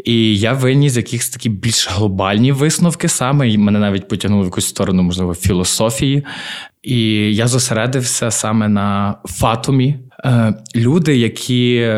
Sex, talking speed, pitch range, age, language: male, 125 wpm, 105-130 Hz, 20-39, Ukrainian